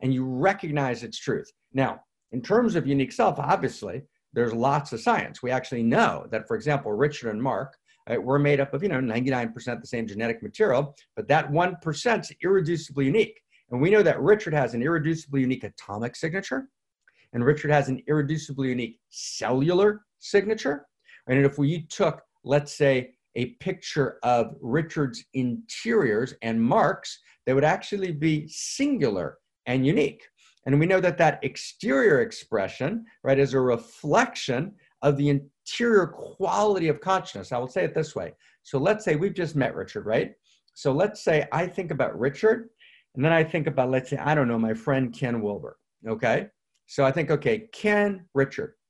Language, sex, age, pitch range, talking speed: English, male, 50-69, 130-185 Hz, 175 wpm